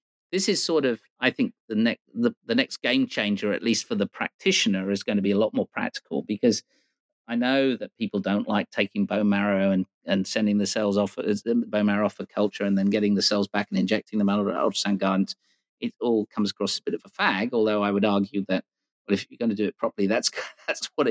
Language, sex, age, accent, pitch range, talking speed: English, male, 50-69, British, 100-130 Hz, 245 wpm